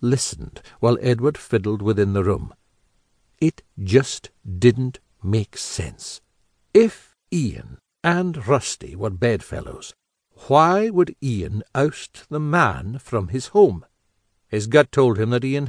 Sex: male